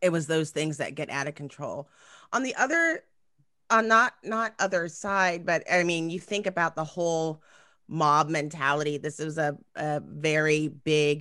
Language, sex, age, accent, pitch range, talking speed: English, female, 30-49, American, 155-205 Hz, 175 wpm